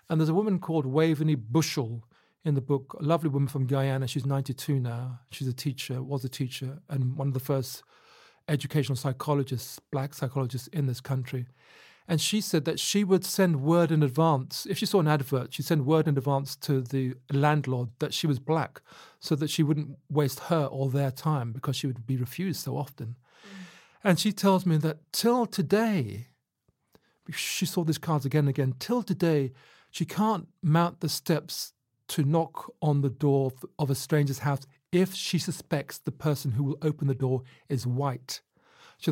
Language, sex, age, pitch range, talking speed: English, male, 40-59, 135-170 Hz, 185 wpm